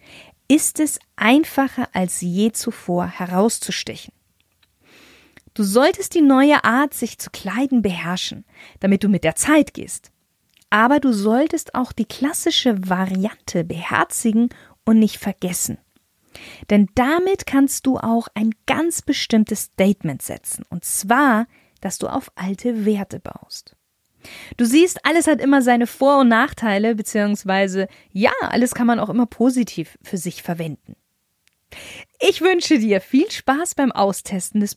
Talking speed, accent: 135 wpm, German